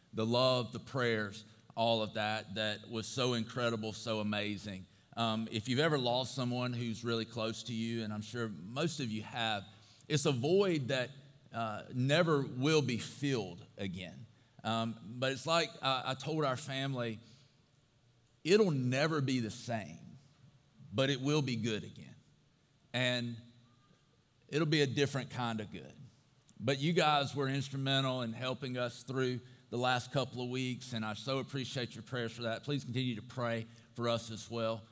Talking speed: 170 wpm